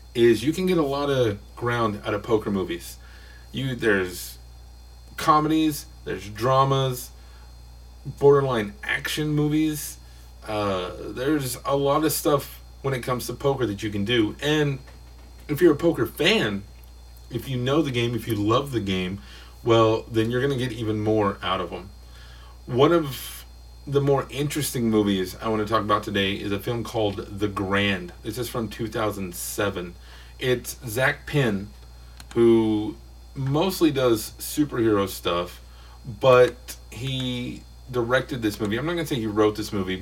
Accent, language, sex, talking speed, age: American, English, male, 160 wpm, 30-49